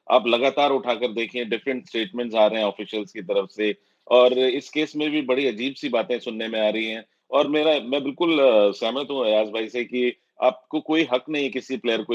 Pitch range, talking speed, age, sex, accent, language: 115-140 Hz, 80 wpm, 30-49, male, native, Hindi